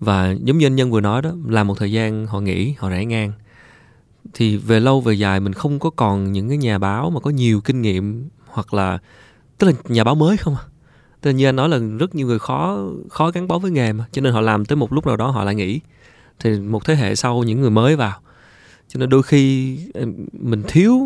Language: Vietnamese